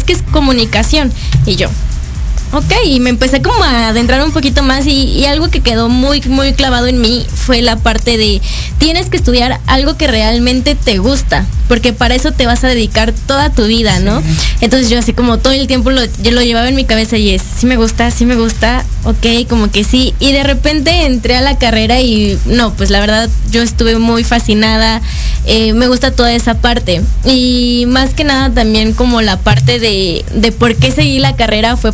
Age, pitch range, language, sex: 10-29, 225-270 Hz, Spanish, female